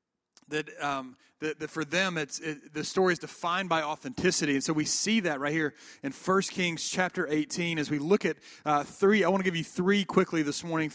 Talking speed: 225 wpm